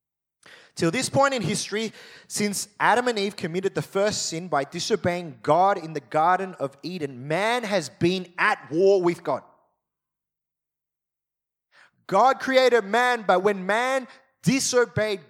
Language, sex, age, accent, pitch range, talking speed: English, male, 20-39, Australian, 155-235 Hz, 135 wpm